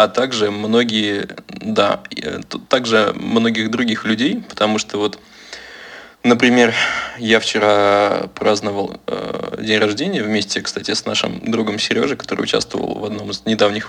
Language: Russian